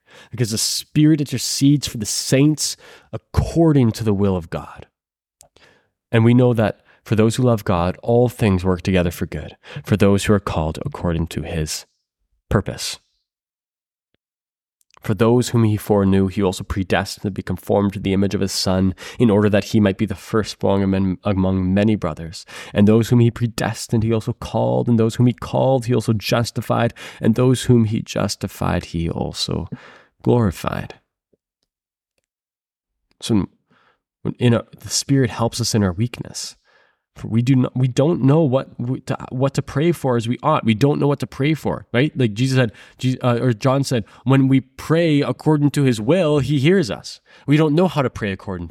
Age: 20-39